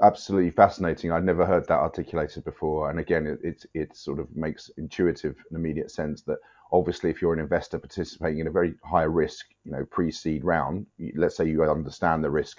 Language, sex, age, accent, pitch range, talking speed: English, male, 30-49, British, 75-90 Hz, 200 wpm